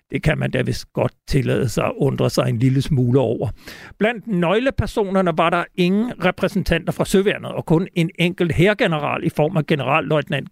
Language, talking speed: Danish, 185 wpm